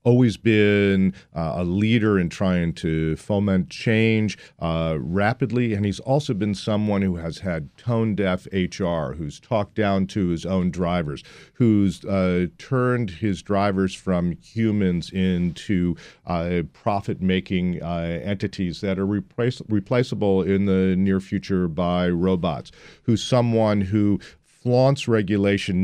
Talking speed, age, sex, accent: 125 wpm, 40-59, male, American